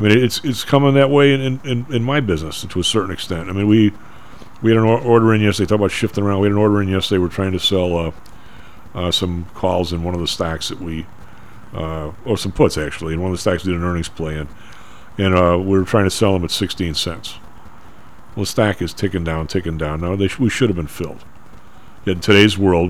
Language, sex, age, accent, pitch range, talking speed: English, male, 40-59, American, 85-110 Hz, 250 wpm